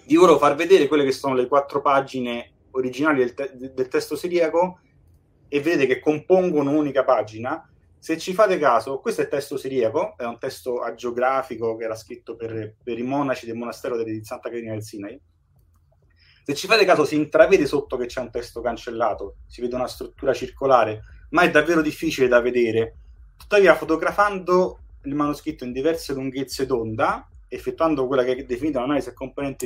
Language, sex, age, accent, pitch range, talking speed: Italian, male, 30-49, native, 120-150 Hz, 180 wpm